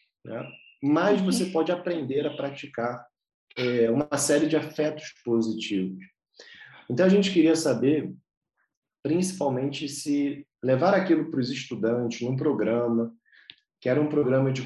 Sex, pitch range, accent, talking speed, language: male, 115-150 Hz, Brazilian, 130 wpm, Portuguese